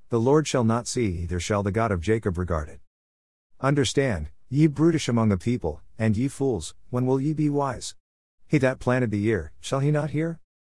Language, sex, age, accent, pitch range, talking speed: English, male, 50-69, American, 90-125 Hz, 205 wpm